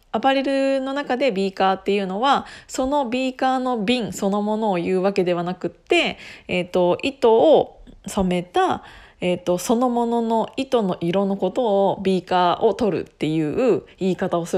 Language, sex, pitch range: Japanese, female, 180-245 Hz